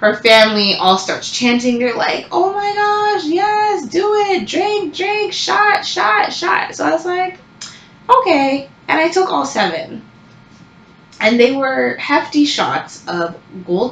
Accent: American